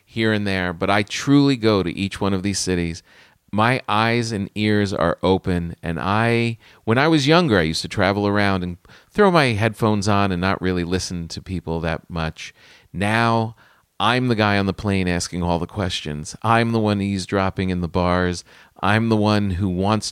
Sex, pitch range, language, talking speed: male, 90-110 Hz, English, 195 wpm